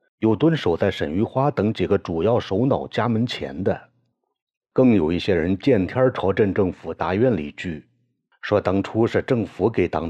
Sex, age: male, 50-69